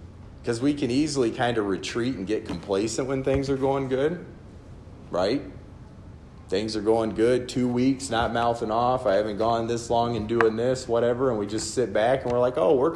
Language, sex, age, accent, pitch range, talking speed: English, male, 40-59, American, 95-120 Hz, 205 wpm